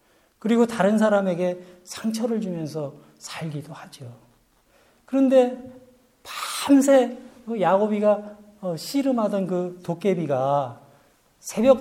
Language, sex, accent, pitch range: Korean, male, native, 160-250 Hz